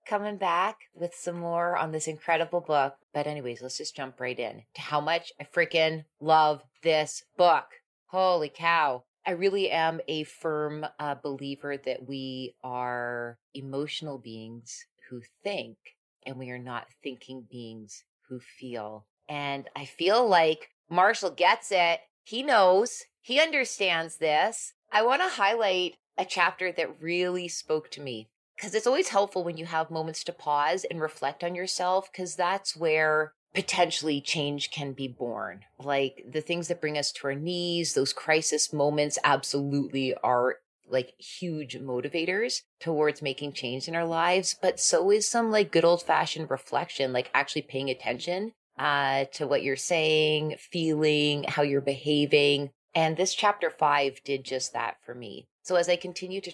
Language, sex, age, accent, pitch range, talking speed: English, female, 30-49, American, 135-175 Hz, 160 wpm